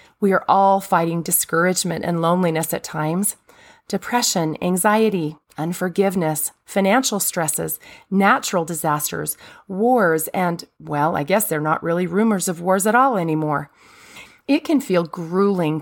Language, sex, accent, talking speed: English, female, American, 130 wpm